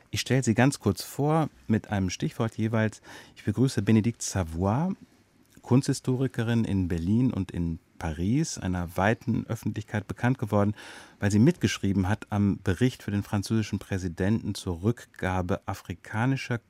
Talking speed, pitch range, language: 135 wpm, 95-125 Hz, German